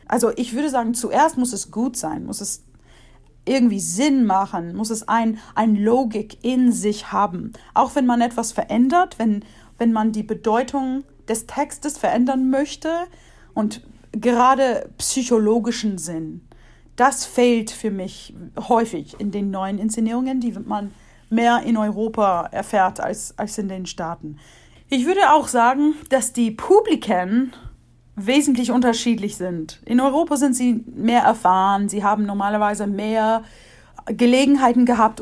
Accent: German